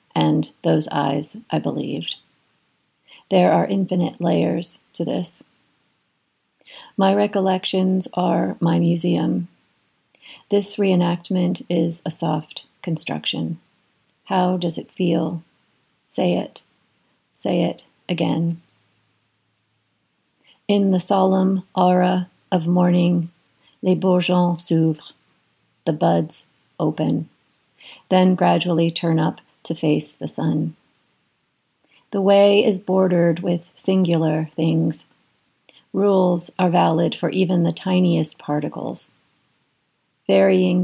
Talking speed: 100 wpm